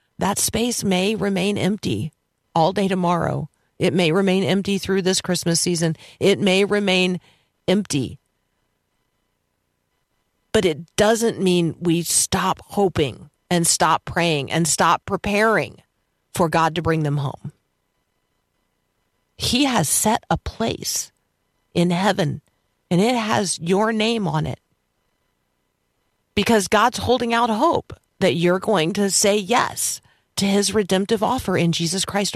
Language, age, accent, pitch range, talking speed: English, 50-69, American, 165-215 Hz, 130 wpm